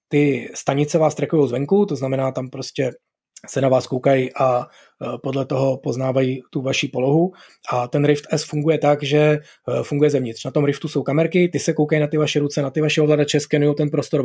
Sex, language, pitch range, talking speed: male, Czech, 135-155 Hz, 200 wpm